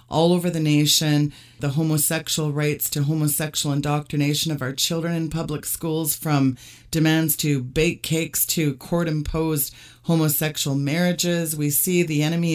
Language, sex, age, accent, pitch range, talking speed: English, female, 30-49, American, 145-170 Hz, 145 wpm